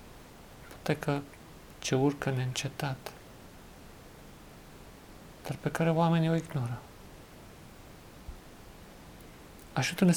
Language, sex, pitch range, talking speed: Romanian, male, 125-150 Hz, 65 wpm